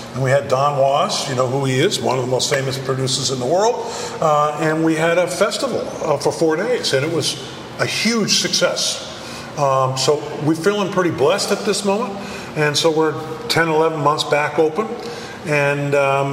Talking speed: 200 wpm